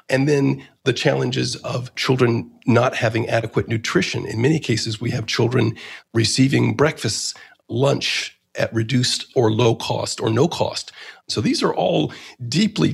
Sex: male